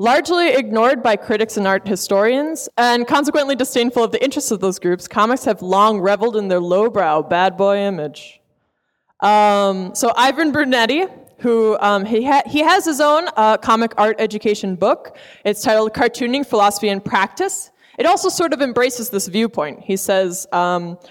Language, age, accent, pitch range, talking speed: English, 20-39, American, 195-255 Hz, 170 wpm